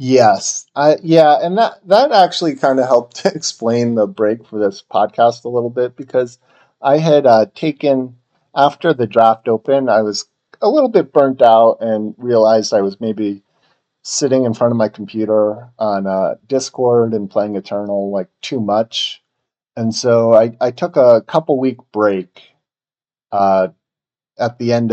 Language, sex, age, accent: English, male, 40-59, American